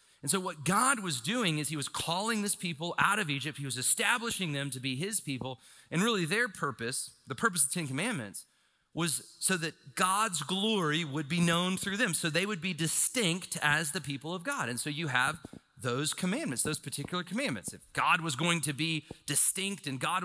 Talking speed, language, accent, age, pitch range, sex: 210 wpm, English, American, 40-59, 150-205 Hz, male